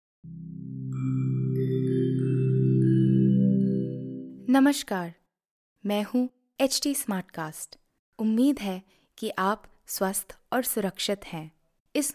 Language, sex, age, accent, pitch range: Hindi, female, 20-39, native, 190-260 Hz